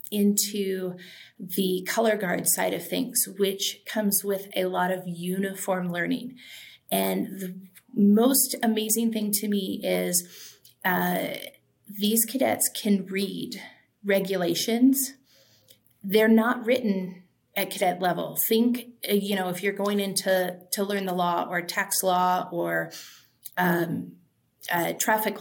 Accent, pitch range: American, 180-215 Hz